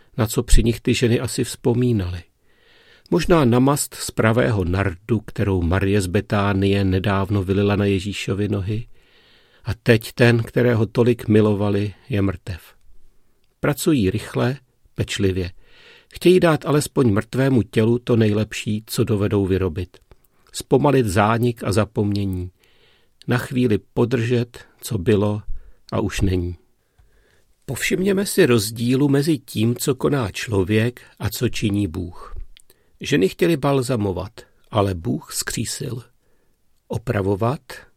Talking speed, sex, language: 115 wpm, male, Czech